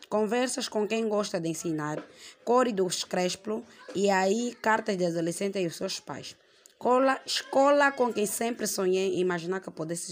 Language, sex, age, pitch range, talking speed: Portuguese, female, 20-39, 180-225 Hz, 160 wpm